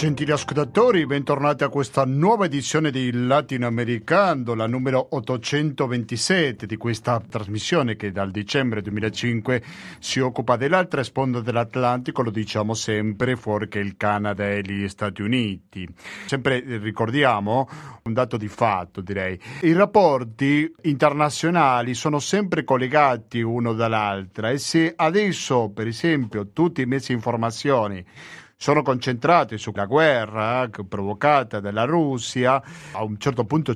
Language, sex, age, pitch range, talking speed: Italian, male, 50-69, 110-145 Hz, 125 wpm